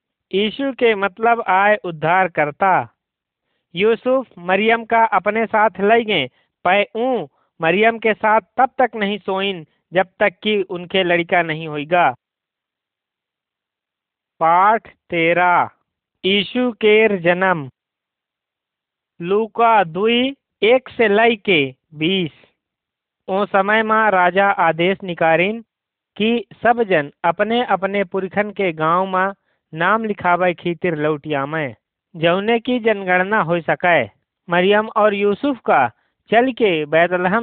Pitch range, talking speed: 170-225 Hz, 115 wpm